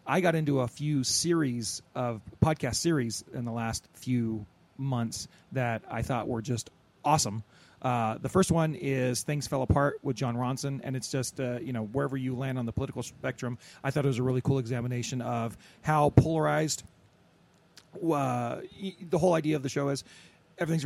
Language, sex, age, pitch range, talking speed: English, male, 30-49, 120-145 Hz, 185 wpm